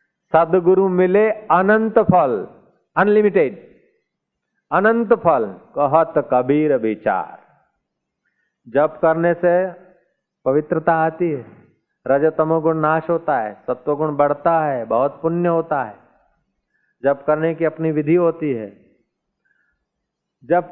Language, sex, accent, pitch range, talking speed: Hindi, male, native, 155-185 Hz, 80 wpm